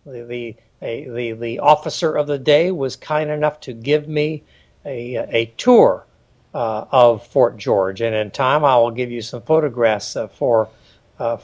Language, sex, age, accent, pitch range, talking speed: English, male, 60-79, American, 115-180 Hz, 180 wpm